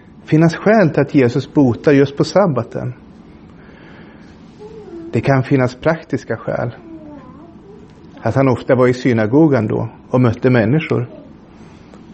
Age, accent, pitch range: 30-49, native, 130-165 Hz